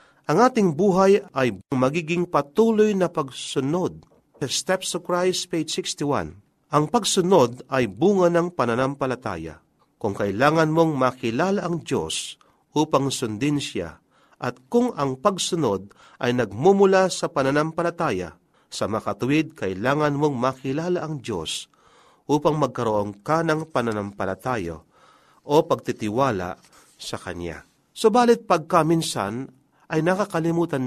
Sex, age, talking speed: male, 40-59, 110 wpm